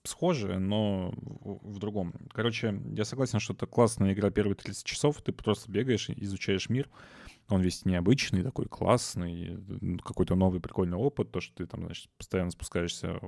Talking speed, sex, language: 165 wpm, male, Russian